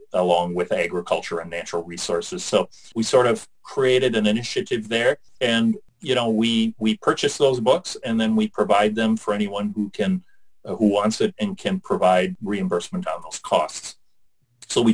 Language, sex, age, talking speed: English, male, 40-59, 175 wpm